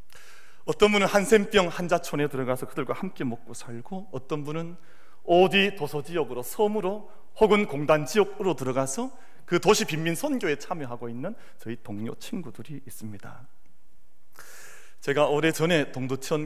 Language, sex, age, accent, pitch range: Korean, male, 40-59, native, 125-185 Hz